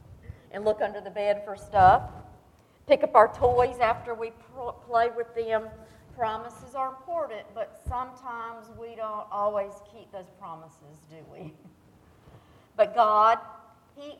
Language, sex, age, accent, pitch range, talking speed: English, female, 50-69, American, 180-225 Hz, 135 wpm